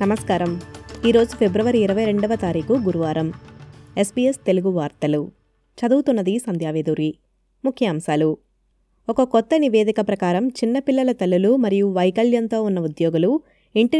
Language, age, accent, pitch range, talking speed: Telugu, 20-39, native, 180-230 Hz, 100 wpm